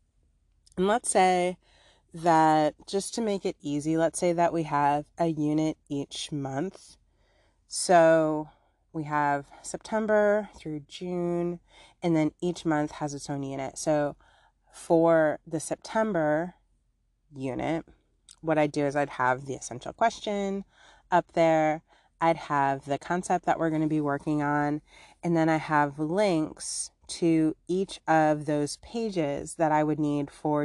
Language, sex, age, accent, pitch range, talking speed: English, female, 30-49, American, 145-170 Hz, 145 wpm